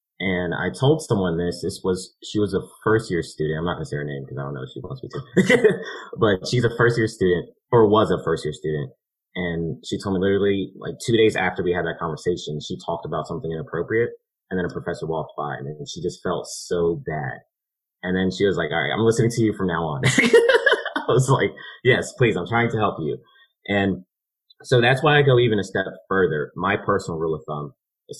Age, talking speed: 30-49, 240 wpm